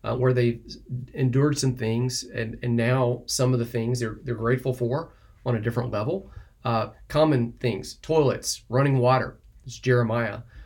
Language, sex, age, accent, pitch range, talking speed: English, male, 40-59, American, 120-145 Hz, 165 wpm